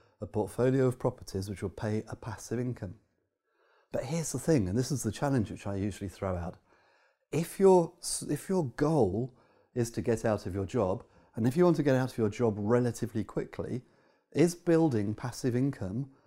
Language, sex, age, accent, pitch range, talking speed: English, male, 30-49, British, 110-150 Hz, 190 wpm